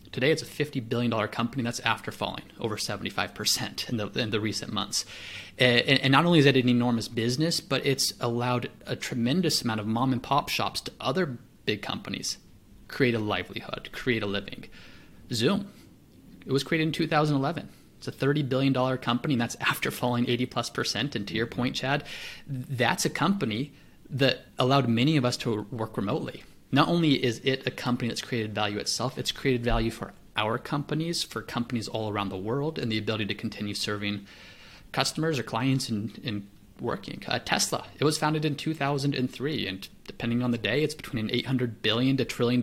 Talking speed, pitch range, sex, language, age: 190 wpm, 115-140 Hz, male, English, 30-49